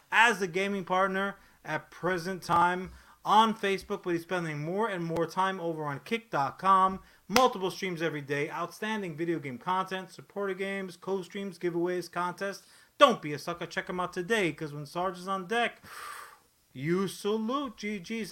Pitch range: 150-185 Hz